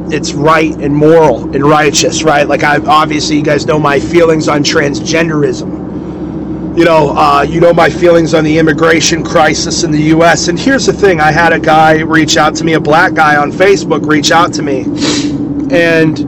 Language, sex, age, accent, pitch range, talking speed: English, male, 30-49, American, 145-165 Hz, 195 wpm